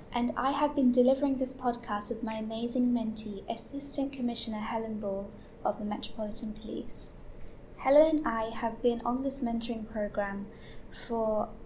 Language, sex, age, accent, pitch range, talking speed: English, female, 20-39, British, 220-245 Hz, 150 wpm